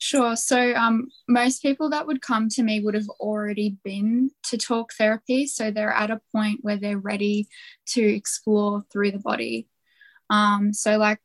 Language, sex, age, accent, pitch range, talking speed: English, female, 10-29, Australian, 200-230 Hz, 175 wpm